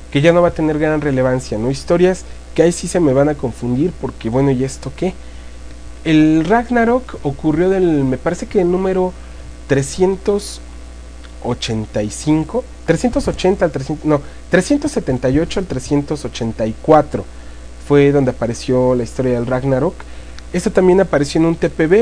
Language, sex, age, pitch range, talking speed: English, male, 30-49, 120-165 Hz, 145 wpm